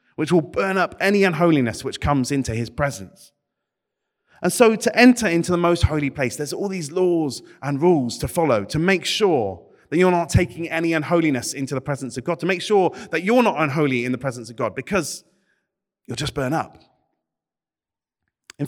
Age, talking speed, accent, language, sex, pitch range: 30-49, 195 wpm, British, English, male, 135-185 Hz